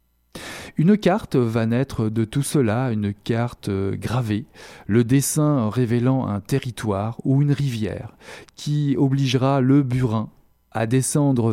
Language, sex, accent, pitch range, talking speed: French, male, French, 105-130 Hz, 125 wpm